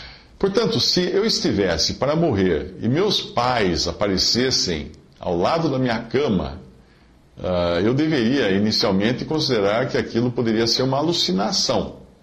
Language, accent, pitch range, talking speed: Portuguese, Brazilian, 90-125 Hz, 125 wpm